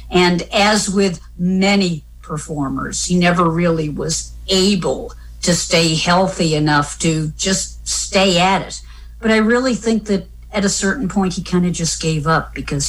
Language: English